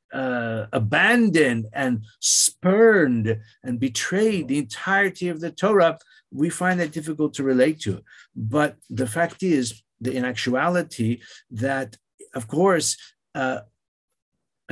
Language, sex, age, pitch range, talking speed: English, male, 50-69, 115-145 Hz, 115 wpm